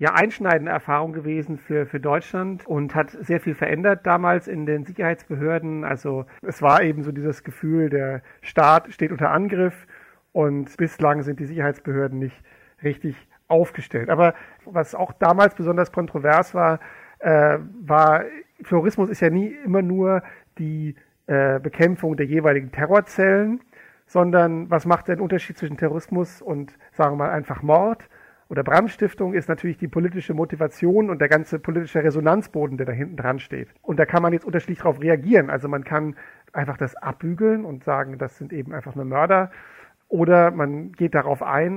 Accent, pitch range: German, 145-175 Hz